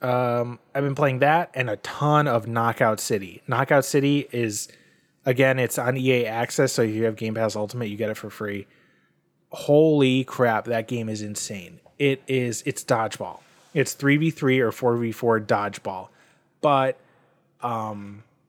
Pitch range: 110-135 Hz